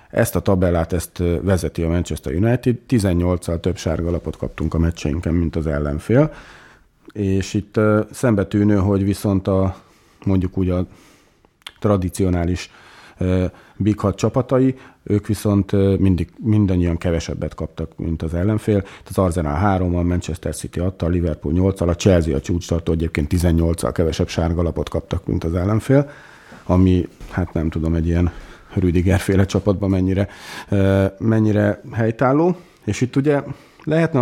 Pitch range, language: 85-110 Hz, Hungarian